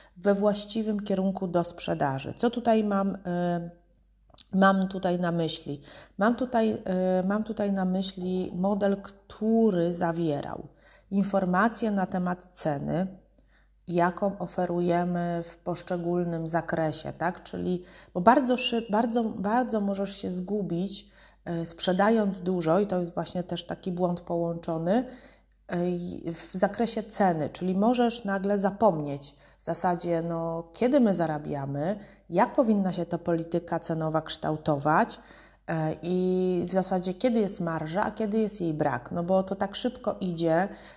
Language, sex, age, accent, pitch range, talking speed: Polish, female, 30-49, native, 170-205 Hz, 130 wpm